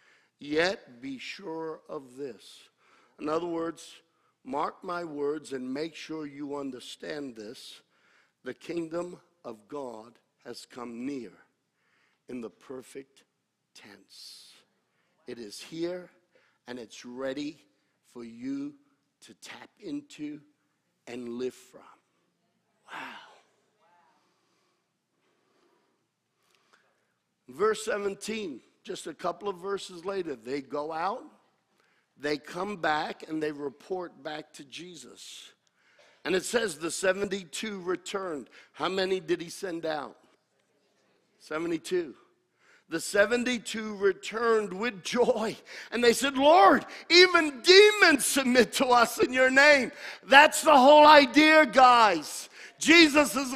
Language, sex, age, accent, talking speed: English, male, 60-79, American, 110 wpm